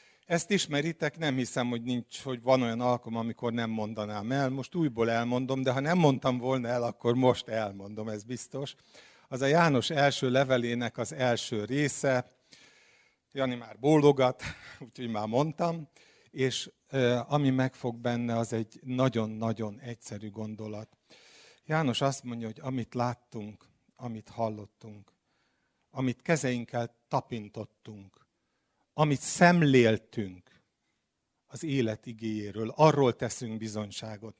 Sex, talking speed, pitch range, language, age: male, 120 wpm, 110-140 Hz, Hungarian, 50-69